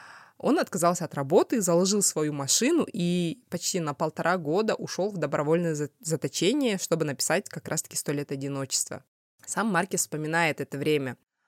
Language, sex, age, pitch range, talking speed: Russian, female, 20-39, 160-200 Hz, 145 wpm